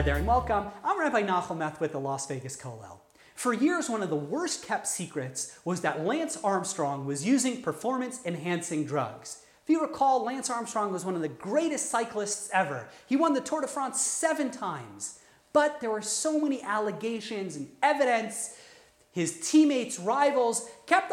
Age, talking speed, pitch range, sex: 30-49, 175 wpm, 175-290 Hz, male